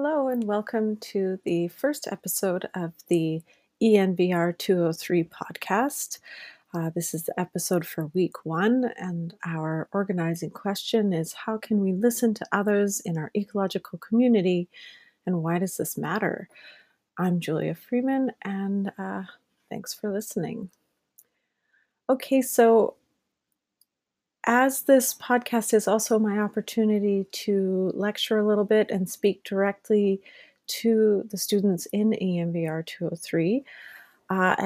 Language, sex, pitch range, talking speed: English, female, 175-225 Hz, 125 wpm